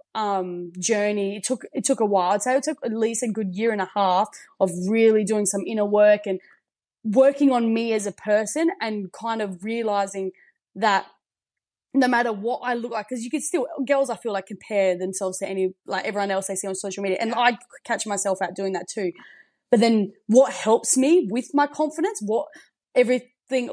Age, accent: 20-39, Australian